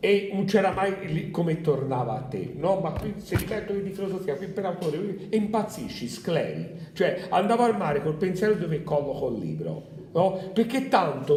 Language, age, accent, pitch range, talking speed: Italian, 50-69, native, 150-200 Hz, 175 wpm